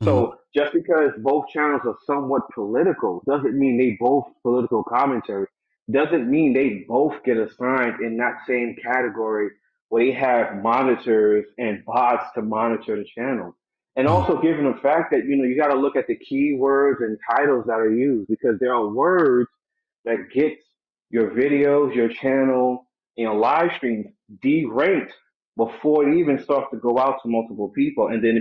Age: 30-49